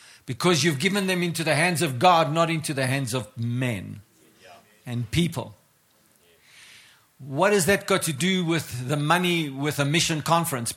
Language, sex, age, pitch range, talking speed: English, male, 60-79, 150-230 Hz, 165 wpm